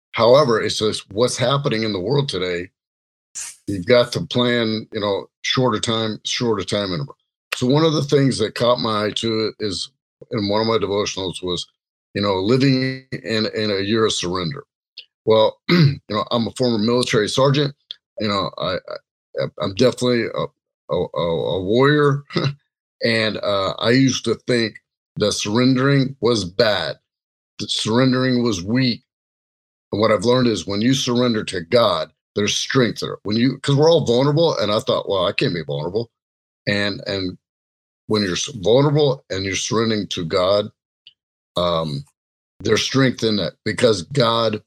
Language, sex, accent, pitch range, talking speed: English, male, American, 100-130 Hz, 160 wpm